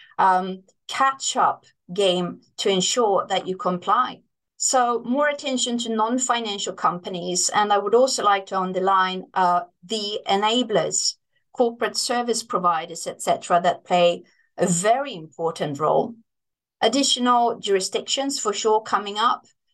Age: 30-49